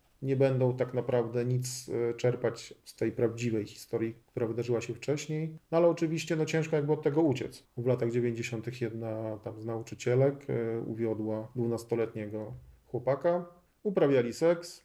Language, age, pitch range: Polish, 40-59, 120-140 Hz